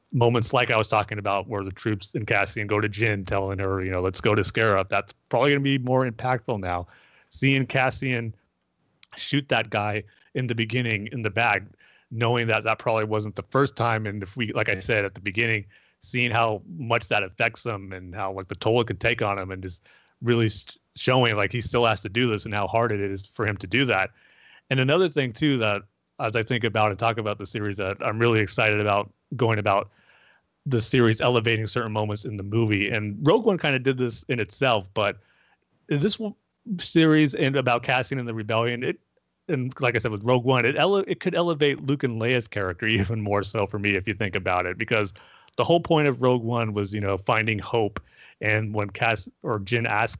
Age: 30-49